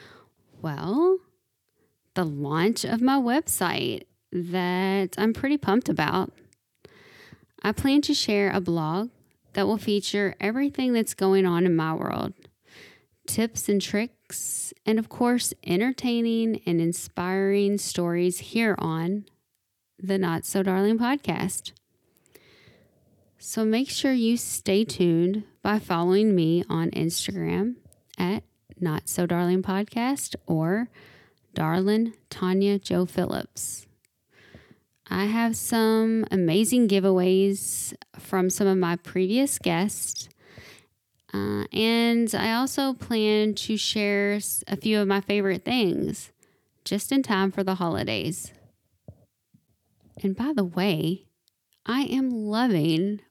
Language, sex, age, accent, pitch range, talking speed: English, female, 10-29, American, 175-220 Hz, 115 wpm